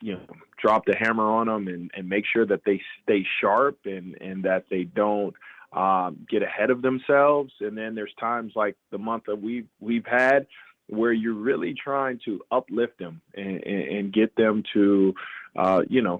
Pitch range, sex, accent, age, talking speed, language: 100-120 Hz, male, American, 20-39, 195 wpm, English